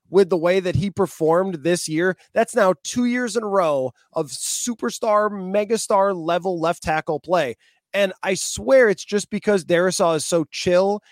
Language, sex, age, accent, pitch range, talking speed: English, male, 20-39, American, 155-200 Hz, 175 wpm